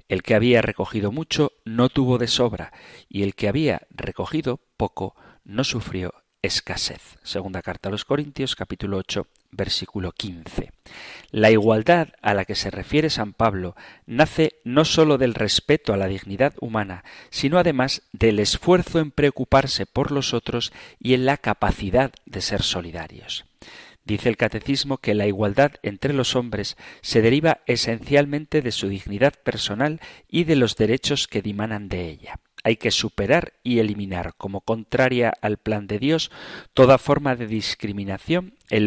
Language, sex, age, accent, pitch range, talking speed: Spanish, male, 40-59, Spanish, 100-135 Hz, 155 wpm